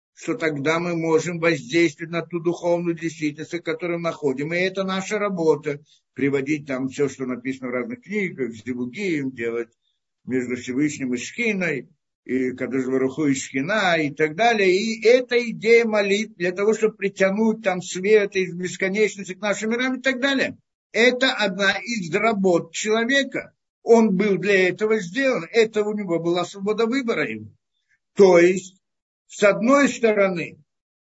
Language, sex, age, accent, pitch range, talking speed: Russian, male, 60-79, native, 170-240 Hz, 150 wpm